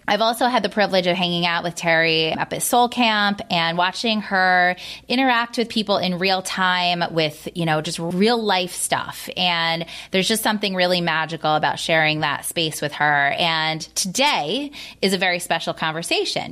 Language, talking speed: English, 180 wpm